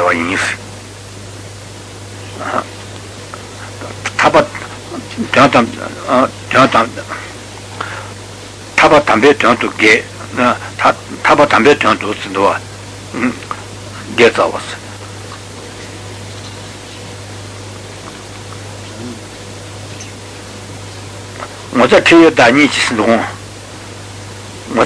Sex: male